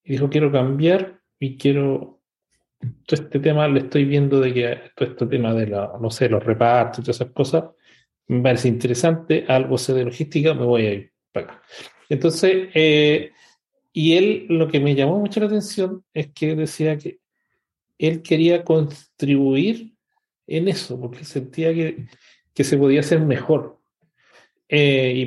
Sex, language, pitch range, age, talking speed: male, English, 125-170 Hz, 40-59, 165 wpm